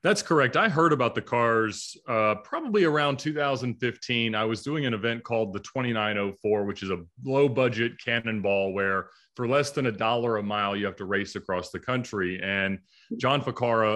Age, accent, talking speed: 30-49, American, 185 wpm